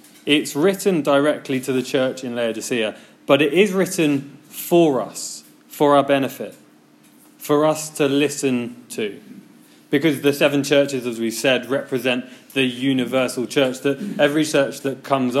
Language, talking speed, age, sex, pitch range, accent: English, 150 wpm, 20-39, male, 120-150 Hz, British